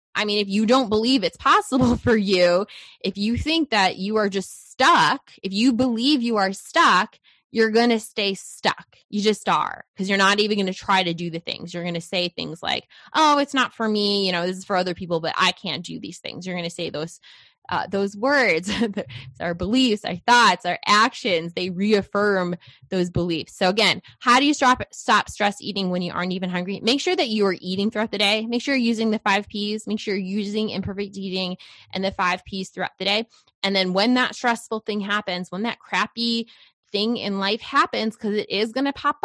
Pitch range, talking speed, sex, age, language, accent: 185-230 Hz, 225 wpm, female, 20-39, English, American